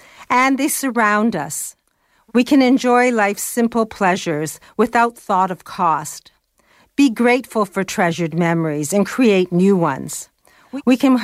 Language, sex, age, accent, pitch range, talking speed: English, female, 50-69, American, 175-225 Hz, 135 wpm